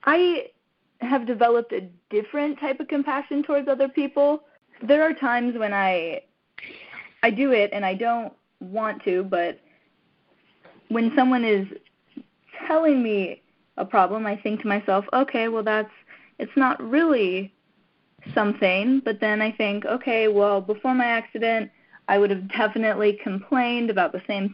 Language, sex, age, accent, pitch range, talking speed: English, female, 20-39, American, 200-260 Hz, 145 wpm